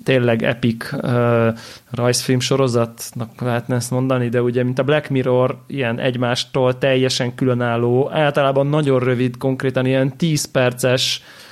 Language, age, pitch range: Hungarian, 30-49, 120-140 Hz